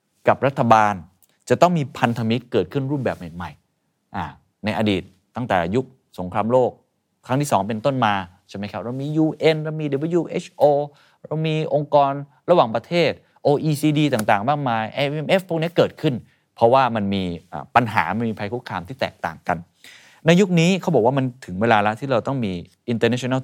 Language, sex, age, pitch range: Thai, male, 20-39, 100-140 Hz